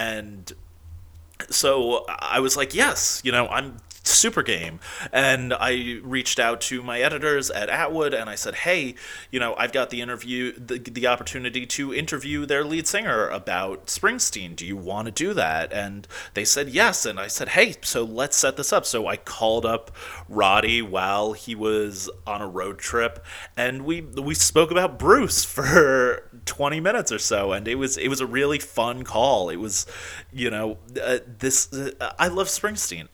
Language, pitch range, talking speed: English, 105-135 Hz, 185 wpm